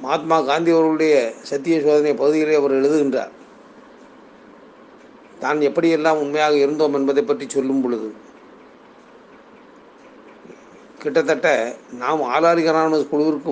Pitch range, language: 140-155 Hz, Tamil